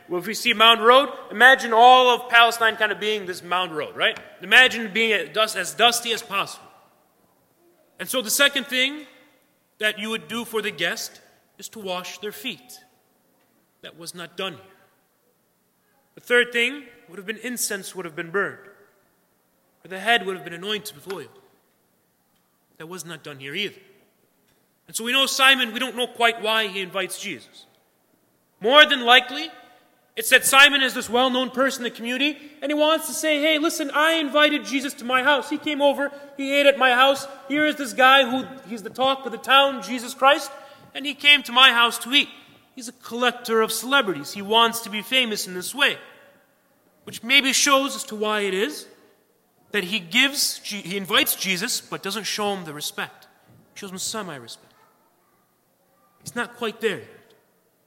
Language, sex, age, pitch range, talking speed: English, male, 30-49, 205-275 Hz, 190 wpm